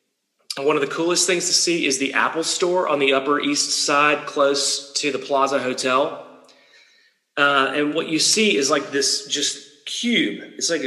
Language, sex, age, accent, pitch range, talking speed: English, male, 30-49, American, 135-160 Hz, 180 wpm